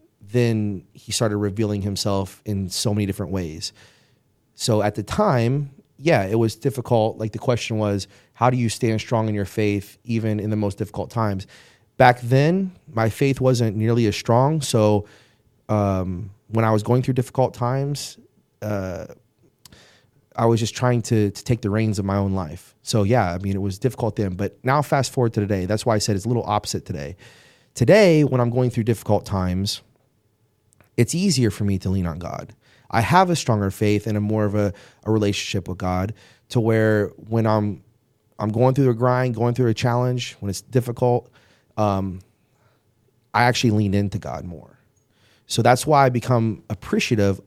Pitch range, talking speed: 100-120 Hz, 185 wpm